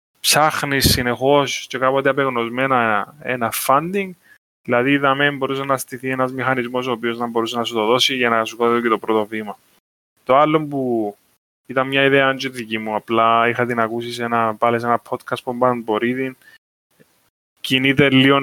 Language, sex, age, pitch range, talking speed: Greek, male, 20-39, 115-135 Hz, 175 wpm